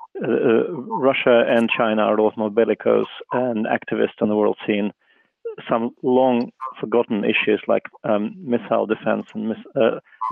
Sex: male